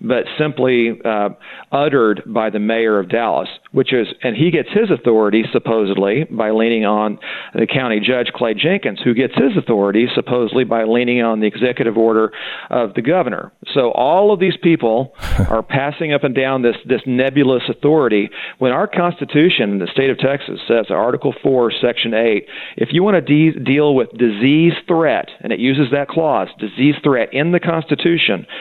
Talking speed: 175 wpm